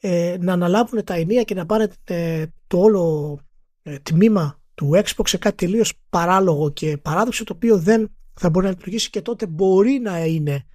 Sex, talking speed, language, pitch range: male, 165 wpm, Greek, 165-235 Hz